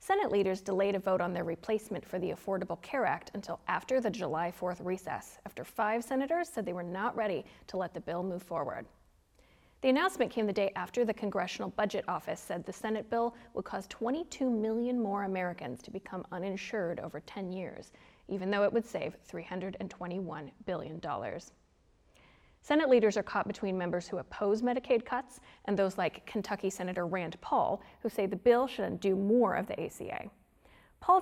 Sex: female